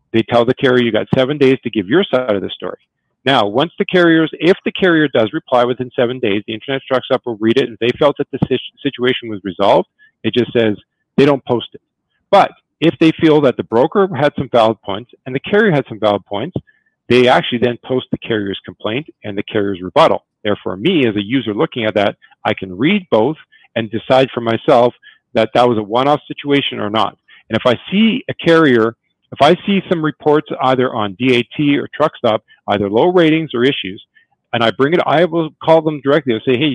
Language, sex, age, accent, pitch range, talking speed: English, male, 40-59, American, 115-160 Hz, 220 wpm